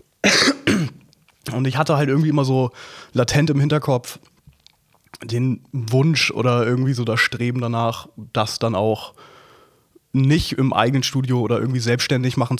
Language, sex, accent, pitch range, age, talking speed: German, male, German, 115-130 Hz, 20-39, 140 wpm